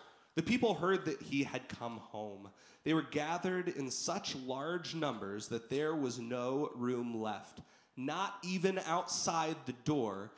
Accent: American